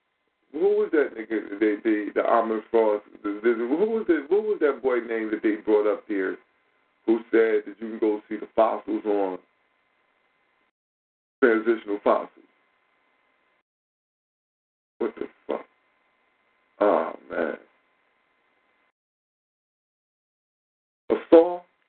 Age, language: 50-69, English